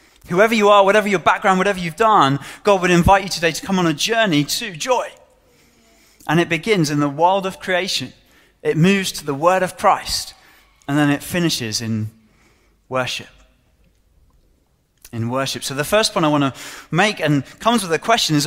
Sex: male